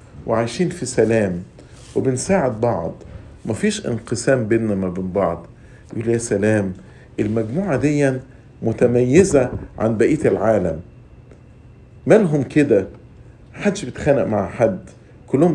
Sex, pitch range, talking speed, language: male, 115-160 Hz, 100 wpm, English